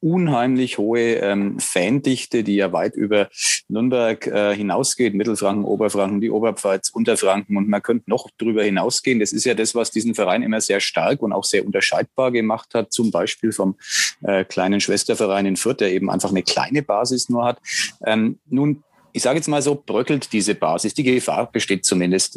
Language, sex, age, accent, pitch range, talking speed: German, male, 30-49, German, 105-125 Hz, 180 wpm